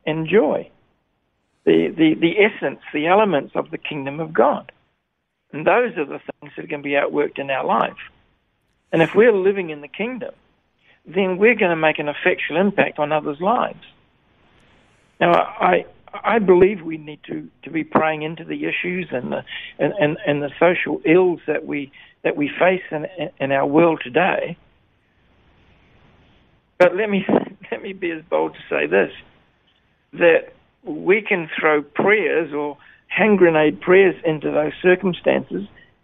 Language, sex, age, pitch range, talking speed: English, male, 60-79, 150-200 Hz, 160 wpm